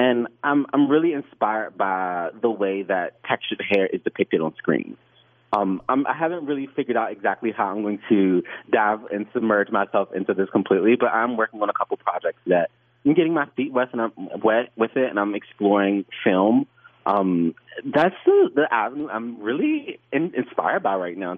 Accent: American